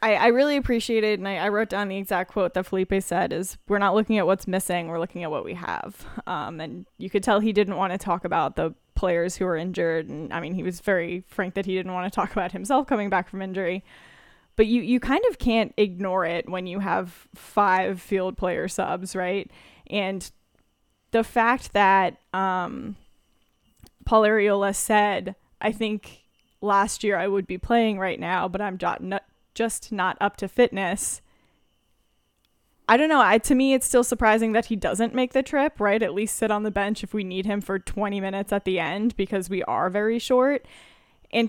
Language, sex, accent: English, female, American